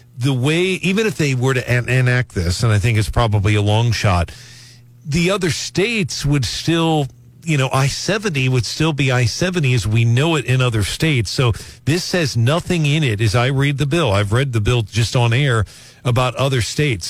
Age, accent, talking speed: 50-69, American, 200 wpm